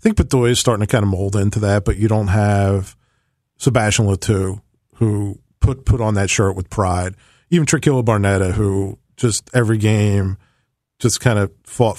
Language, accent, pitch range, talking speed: English, American, 105-135 Hz, 180 wpm